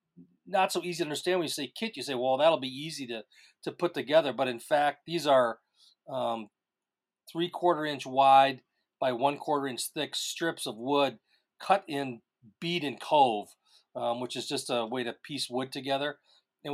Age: 40-59